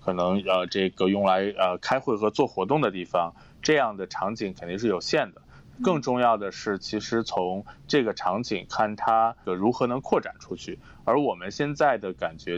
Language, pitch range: Chinese, 95-125 Hz